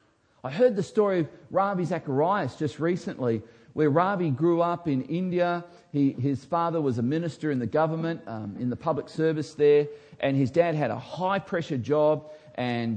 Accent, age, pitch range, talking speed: Australian, 40-59, 130-170 Hz, 175 wpm